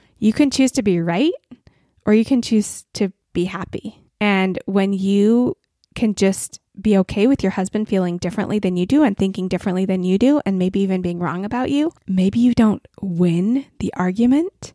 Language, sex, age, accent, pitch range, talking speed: English, female, 20-39, American, 185-230 Hz, 190 wpm